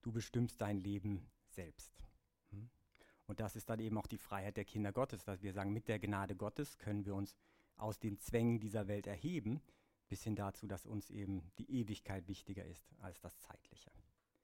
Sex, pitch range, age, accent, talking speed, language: male, 100-120 Hz, 60-79, German, 190 wpm, English